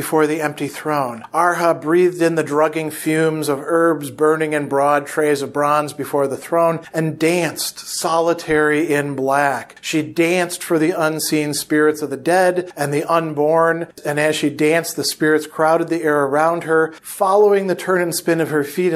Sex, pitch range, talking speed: male, 145-170 Hz, 180 wpm